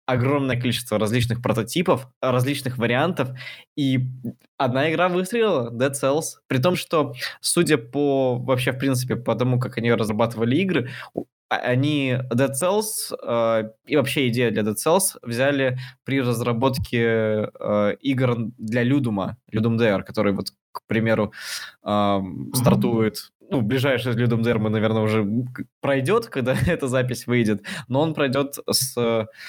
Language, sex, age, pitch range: Russian, male, 20-39, 115-140 Hz